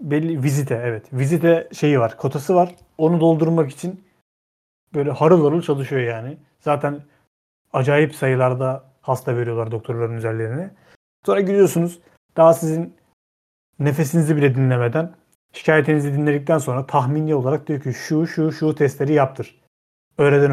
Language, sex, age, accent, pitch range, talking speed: Turkish, male, 40-59, native, 130-165 Hz, 125 wpm